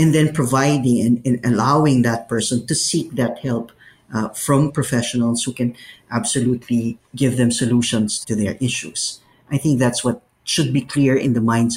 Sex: male